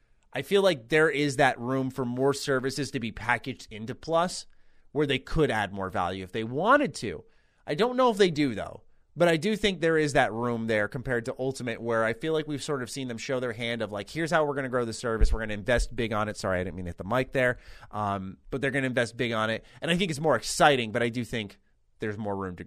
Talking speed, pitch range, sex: 280 wpm, 110-150 Hz, male